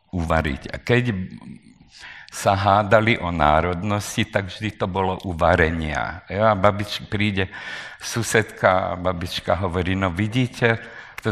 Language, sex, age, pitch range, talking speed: Slovak, male, 50-69, 90-110 Hz, 120 wpm